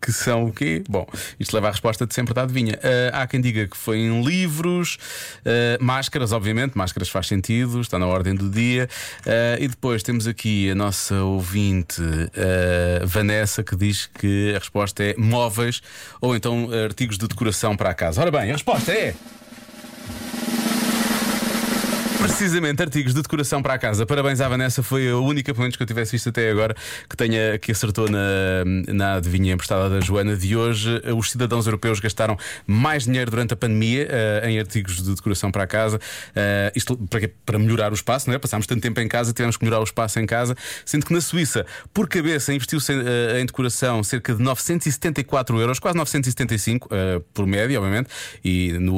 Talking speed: 190 wpm